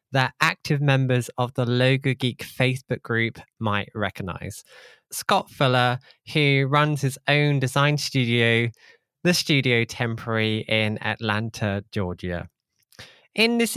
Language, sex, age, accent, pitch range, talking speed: English, male, 20-39, British, 120-155 Hz, 120 wpm